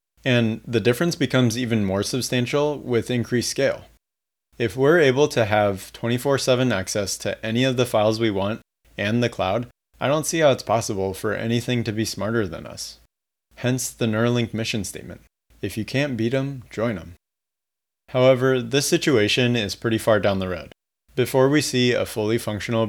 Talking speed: 175 wpm